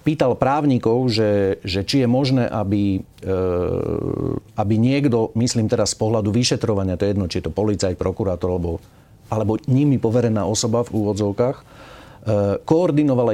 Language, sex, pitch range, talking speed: Slovak, male, 105-145 Hz, 145 wpm